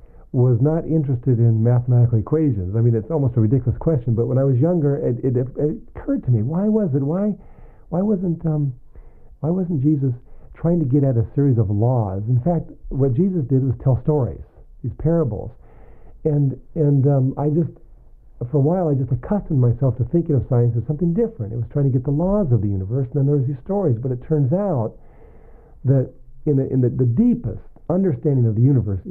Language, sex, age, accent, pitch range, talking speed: English, male, 50-69, American, 120-155 Hz, 210 wpm